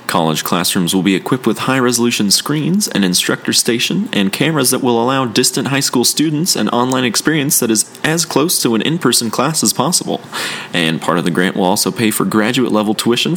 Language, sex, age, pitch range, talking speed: English, male, 30-49, 105-130 Hz, 200 wpm